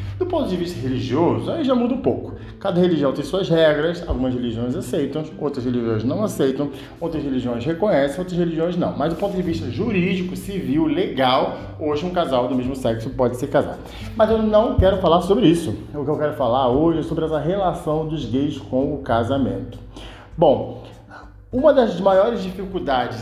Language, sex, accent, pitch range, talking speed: Portuguese, male, Brazilian, 120-180 Hz, 185 wpm